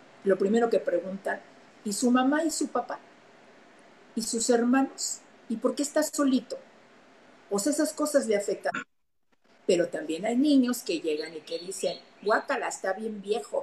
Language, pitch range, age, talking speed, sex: Spanish, 180-235 Hz, 50-69, 165 wpm, female